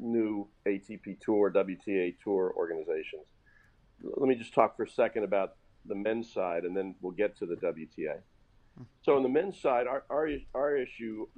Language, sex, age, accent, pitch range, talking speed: English, male, 50-69, American, 100-120 Hz, 175 wpm